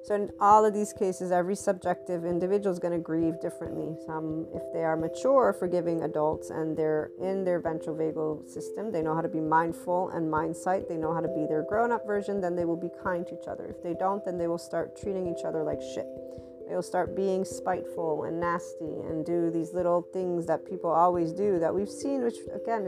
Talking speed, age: 225 wpm, 40-59